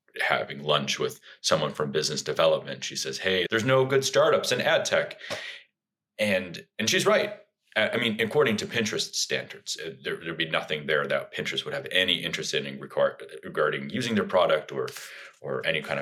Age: 30-49